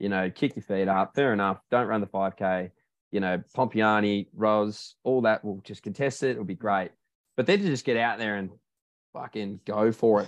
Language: English